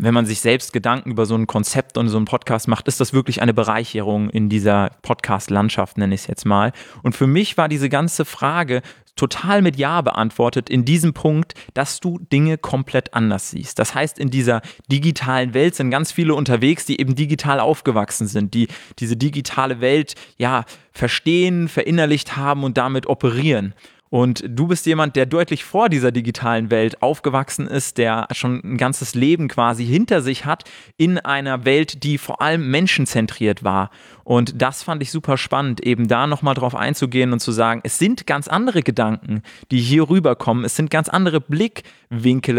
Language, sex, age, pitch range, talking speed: German, male, 20-39, 120-155 Hz, 180 wpm